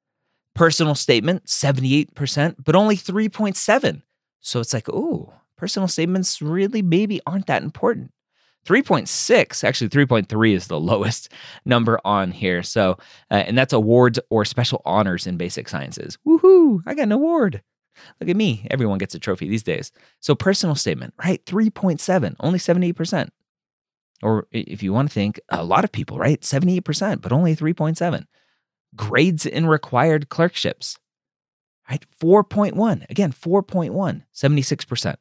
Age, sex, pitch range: 30-49, male, 115-175 Hz